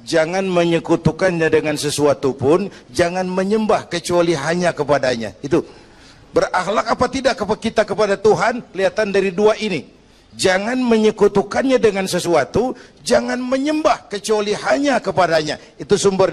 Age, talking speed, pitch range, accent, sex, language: 50-69, 120 wpm, 145-210 Hz, native, male, Indonesian